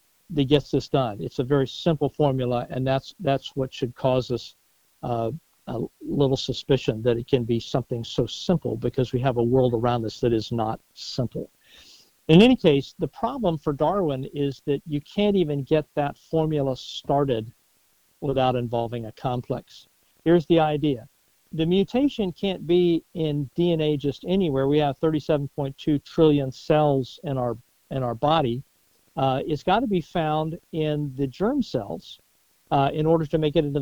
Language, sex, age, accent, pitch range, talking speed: English, male, 50-69, American, 135-165 Hz, 170 wpm